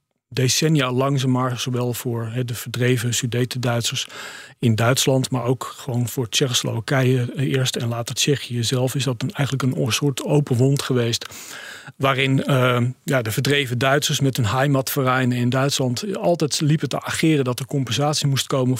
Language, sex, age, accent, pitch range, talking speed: Dutch, male, 40-59, Dutch, 125-145 Hz, 160 wpm